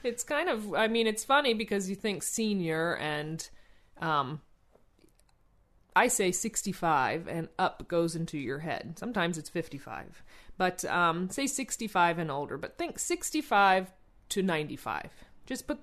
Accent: American